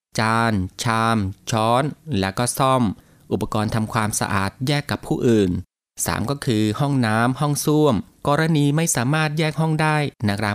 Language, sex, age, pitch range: Thai, male, 20-39, 105-140 Hz